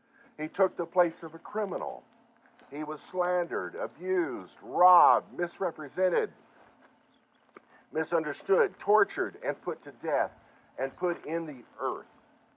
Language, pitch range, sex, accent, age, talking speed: English, 140-225 Hz, male, American, 50-69, 115 wpm